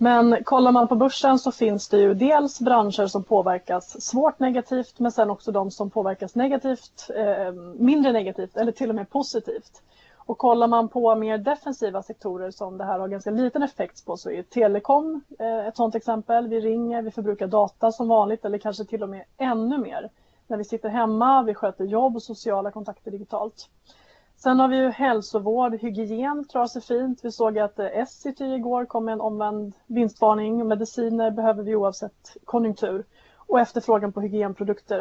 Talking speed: 175 wpm